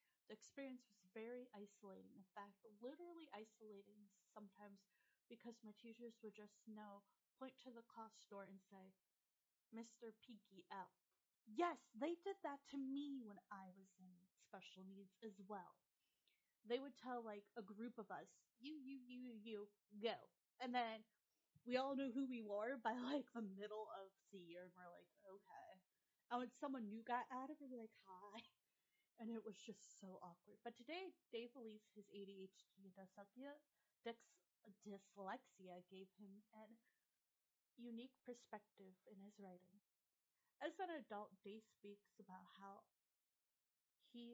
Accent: American